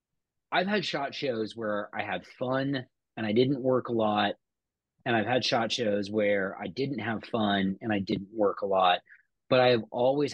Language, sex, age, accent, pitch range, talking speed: English, male, 30-49, American, 105-130 Hz, 190 wpm